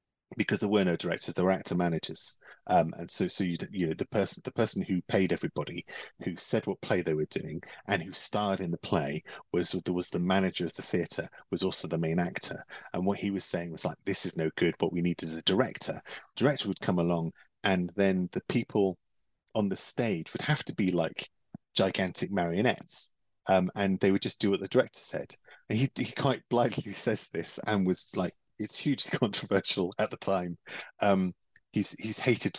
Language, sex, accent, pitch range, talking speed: English, male, British, 90-105 Hz, 210 wpm